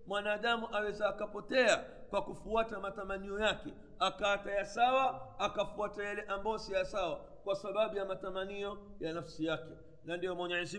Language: Swahili